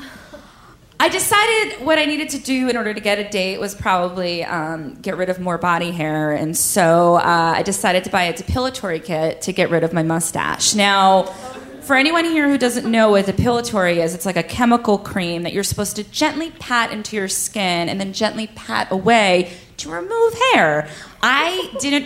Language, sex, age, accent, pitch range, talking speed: English, female, 20-39, American, 185-290 Hz, 195 wpm